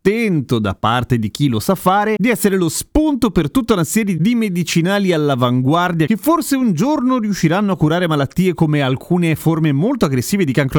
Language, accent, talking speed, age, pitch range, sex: Italian, native, 195 wpm, 30-49, 120-170 Hz, male